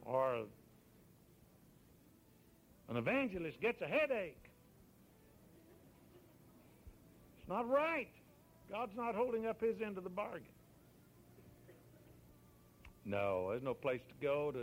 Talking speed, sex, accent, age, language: 105 wpm, male, American, 60-79, English